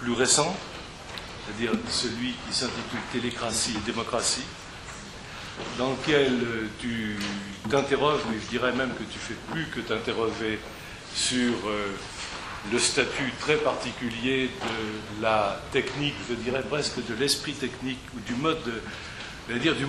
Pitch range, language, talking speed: 115-140 Hz, French, 130 wpm